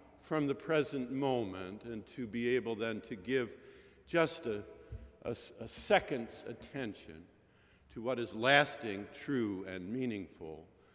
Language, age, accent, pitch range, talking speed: English, 50-69, American, 110-135 Hz, 125 wpm